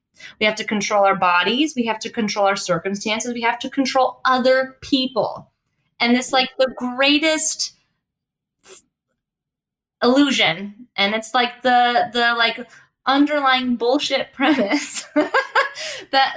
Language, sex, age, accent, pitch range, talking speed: English, female, 20-39, American, 230-295 Hz, 125 wpm